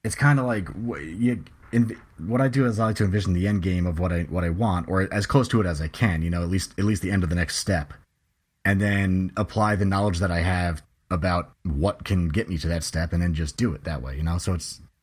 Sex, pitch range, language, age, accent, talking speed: male, 85-105 Hz, English, 30-49, American, 270 wpm